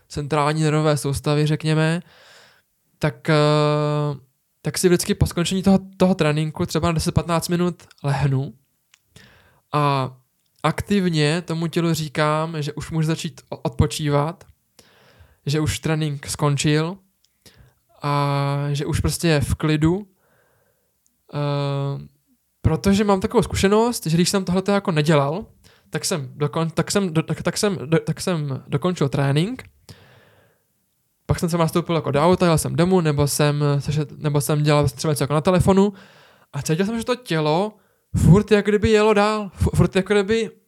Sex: male